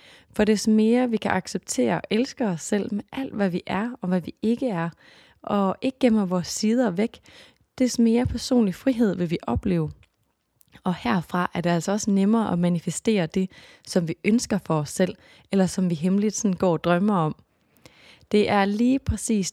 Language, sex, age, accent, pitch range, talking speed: Danish, female, 20-39, native, 165-210 Hz, 190 wpm